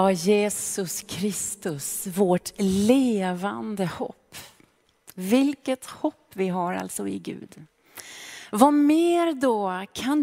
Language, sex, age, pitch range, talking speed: Swedish, female, 30-49, 200-265 Hz, 100 wpm